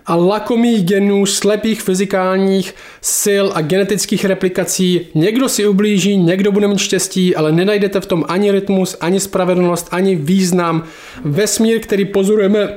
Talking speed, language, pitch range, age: 135 wpm, Czech, 165-205 Hz, 20-39